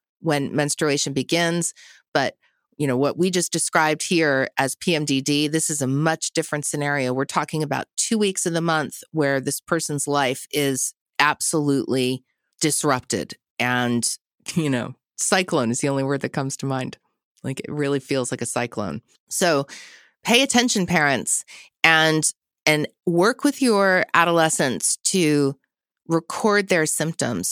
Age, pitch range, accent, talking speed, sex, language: 30-49, 145-185 Hz, American, 145 wpm, female, English